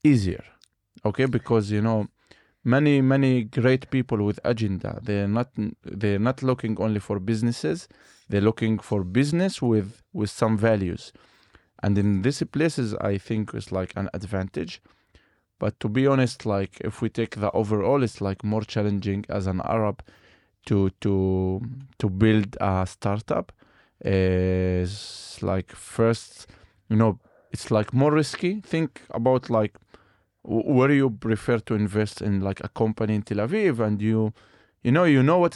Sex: male